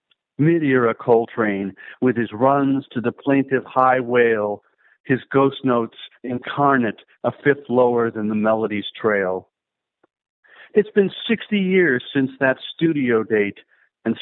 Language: English